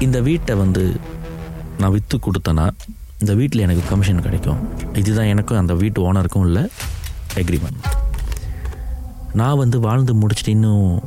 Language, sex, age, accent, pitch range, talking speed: Tamil, male, 30-49, native, 90-115 Hz, 120 wpm